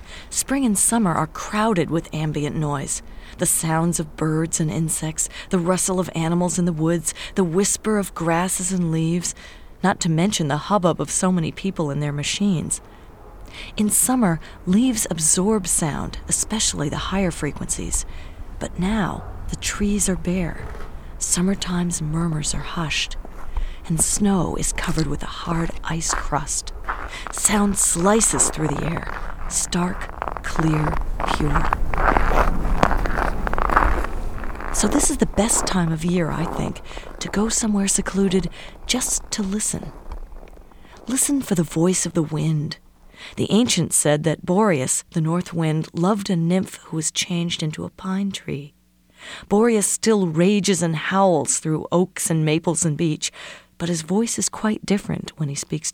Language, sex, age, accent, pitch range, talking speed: English, female, 40-59, American, 155-195 Hz, 145 wpm